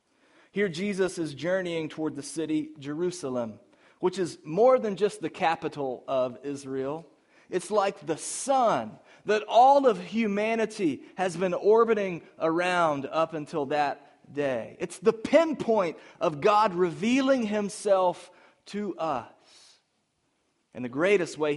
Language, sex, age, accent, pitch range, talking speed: English, male, 30-49, American, 150-210 Hz, 130 wpm